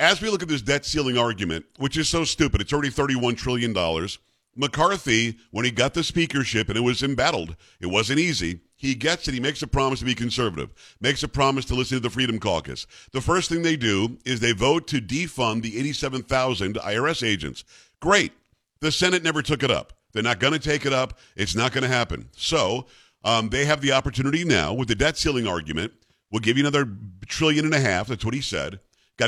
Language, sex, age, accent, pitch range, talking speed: English, male, 50-69, American, 115-150 Hz, 215 wpm